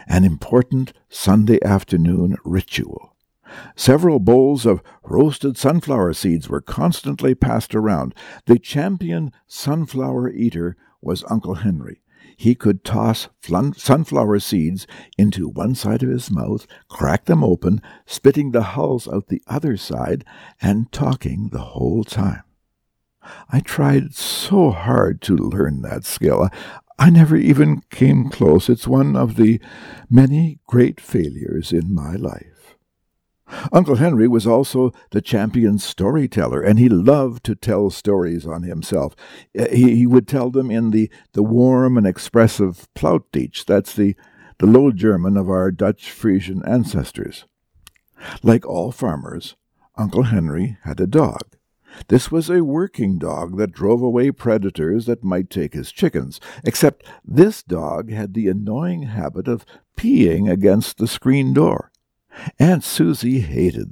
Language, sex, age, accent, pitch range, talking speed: English, male, 60-79, American, 100-130 Hz, 140 wpm